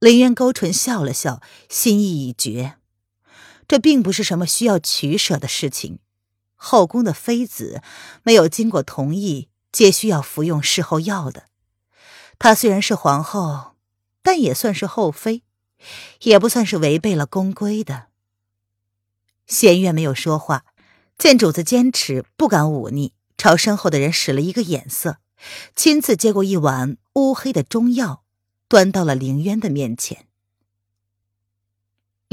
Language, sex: Chinese, female